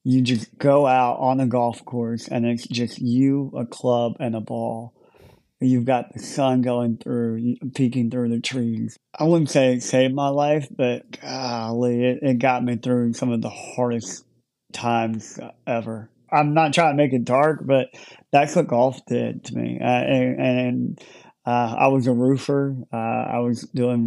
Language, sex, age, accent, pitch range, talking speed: English, male, 30-49, American, 115-130 Hz, 180 wpm